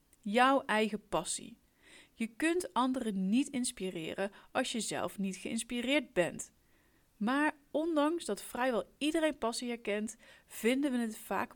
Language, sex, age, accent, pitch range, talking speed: Dutch, female, 30-49, Dutch, 200-260 Hz, 130 wpm